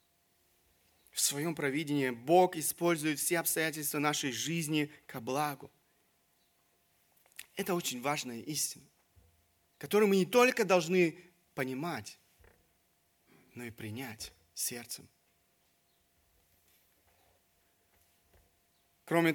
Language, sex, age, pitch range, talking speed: Russian, male, 30-49, 130-175 Hz, 80 wpm